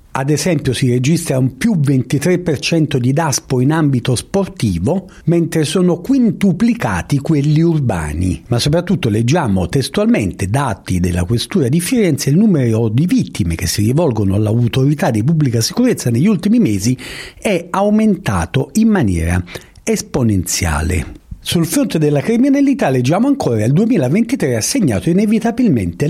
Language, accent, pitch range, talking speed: Italian, native, 120-195 Hz, 130 wpm